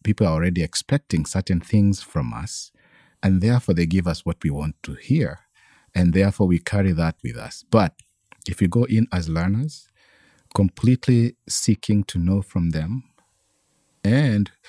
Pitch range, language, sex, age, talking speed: 90-115 Hz, English, male, 50-69, 160 wpm